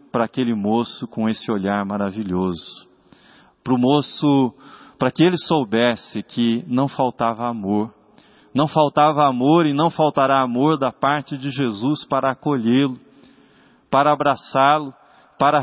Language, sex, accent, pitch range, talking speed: Portuguese, male, Brazilian, 105-140 Hz, 130 wpm